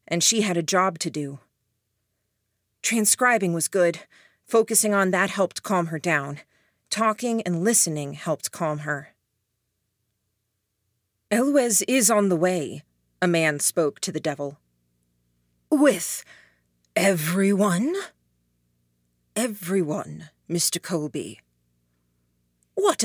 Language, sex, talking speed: English, female, 105 wpm